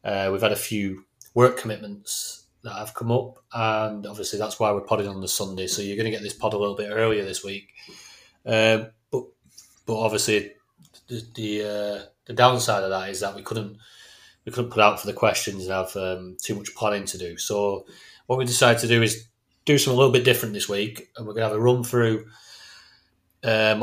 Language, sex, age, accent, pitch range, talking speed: English, male, 30-49, British, 95-110 Hz, 220 wpm